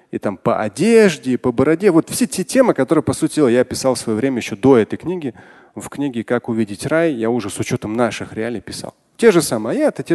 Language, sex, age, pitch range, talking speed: Russian, male, 30-49, 125-185 Hz, 255 wpm